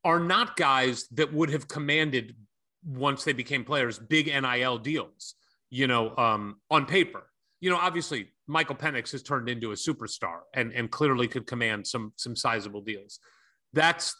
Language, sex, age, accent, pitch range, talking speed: English, male, 30-49, American, 130-180 Hz, 165 wpm